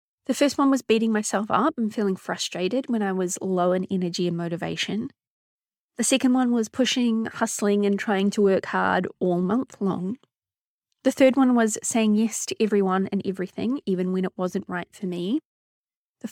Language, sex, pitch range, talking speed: English, female, 185-235 Hz, 185 wpm